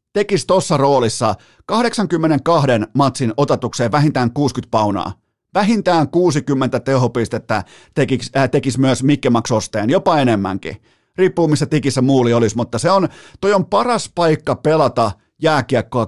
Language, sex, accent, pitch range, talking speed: Finnish, male, native, 120-160 Hz, 120 wpm